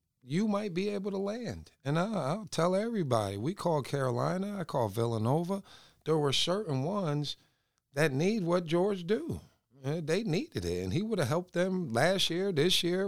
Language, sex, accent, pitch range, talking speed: English, male, American, 105-165 Hz, 185 wpm